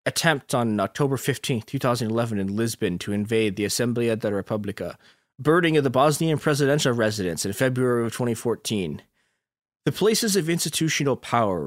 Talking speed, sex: 145 wpm, male